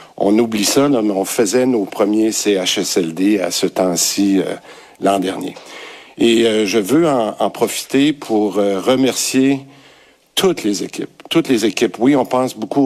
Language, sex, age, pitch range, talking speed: French, male, 60-79, 95-115 Hz, 170 wpm